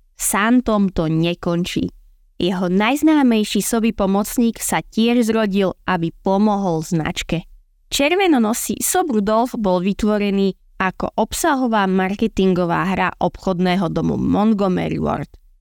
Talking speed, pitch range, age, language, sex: 105 wpm, 185-235 Hz, 20-39, Slovak, female